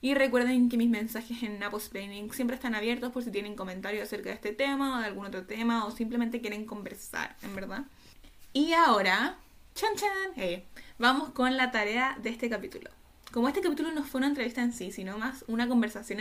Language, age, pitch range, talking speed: Spanish, 10-29, 215-270 Hz, 205 wpm